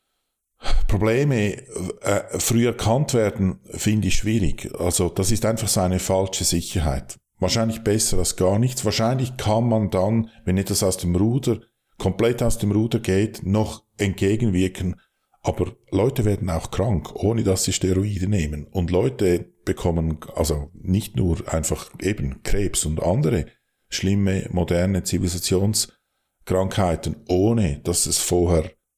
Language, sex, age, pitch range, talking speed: German, male, 50-69, 90-110 Hz, 135 wpm